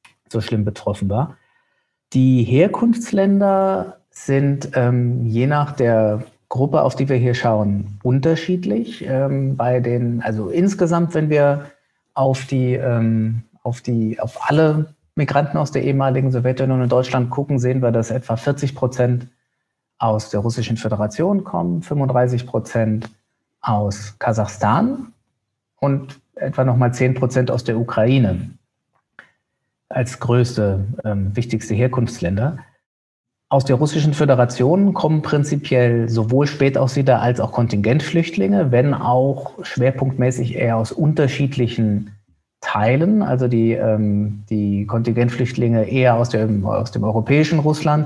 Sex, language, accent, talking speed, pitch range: male, German, German, 115 wpm, 115-140 Hz